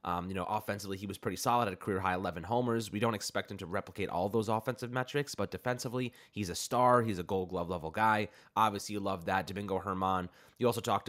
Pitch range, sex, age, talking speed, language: 95-110 Hz, male, 20-39, 235 wpm, English